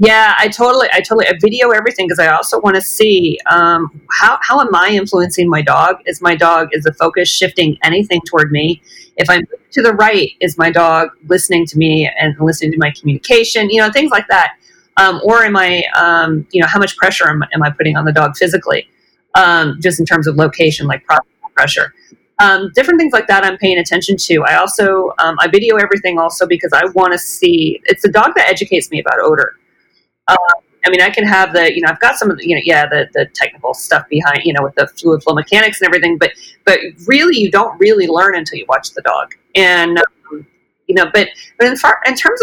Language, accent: English, American